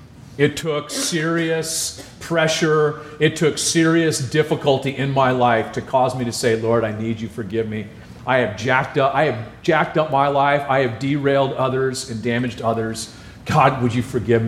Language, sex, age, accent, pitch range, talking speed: English, male, 40-59, American, 120-145 Hz, 180 wpm